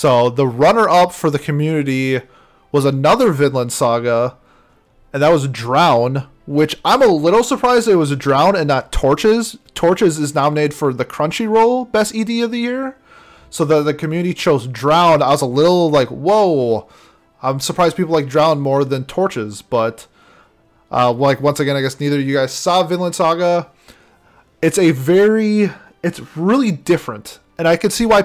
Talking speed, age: 175 wpm, 20-39